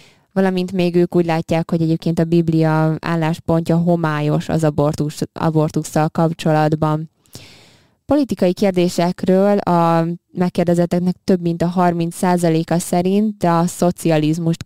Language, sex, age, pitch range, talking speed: Hungarian, female, 20-39, 160-180 Hz, 100 wpm